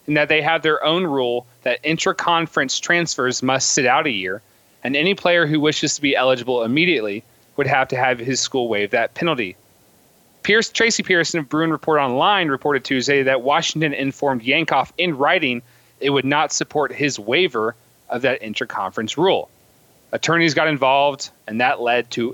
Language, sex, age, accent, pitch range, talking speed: English, male, 30-49, American, 130-170 Hz, 170 wpm